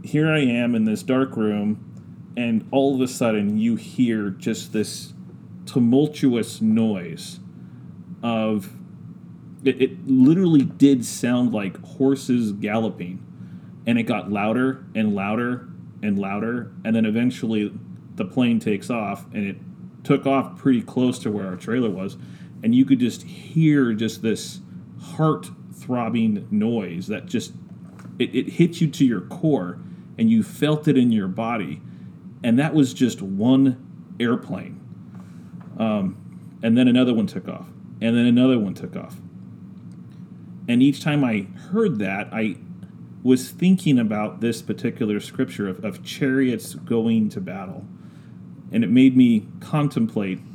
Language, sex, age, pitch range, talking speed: English, male, 30-49, 105-140 Hz, 145 wpm